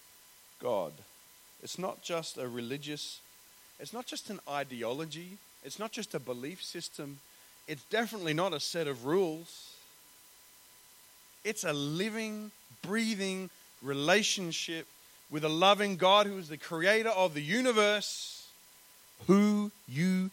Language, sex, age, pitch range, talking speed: Danish, male, 30-49, 140-190 Hz, 125 wpm